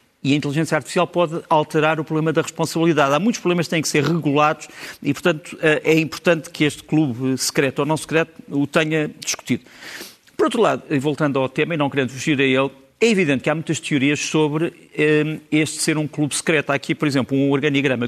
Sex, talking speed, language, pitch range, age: male, 205 wpm, Portuguese, 140-165 Hz, 50-69